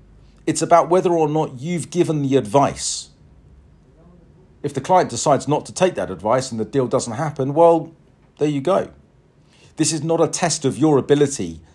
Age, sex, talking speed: 50-69, male, 180 wpm